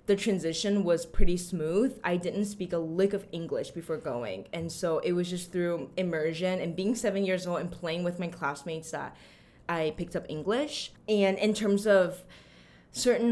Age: 10-29